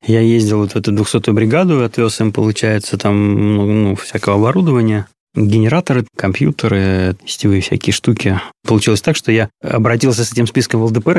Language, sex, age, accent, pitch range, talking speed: Russian, male, 20-39, native, 105-120 Hz, 160 wpm